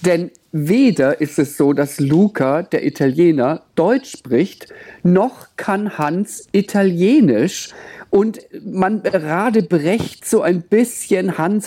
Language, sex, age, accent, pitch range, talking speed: German, male, 50-69, German, 165-215 Hz, 120 wpm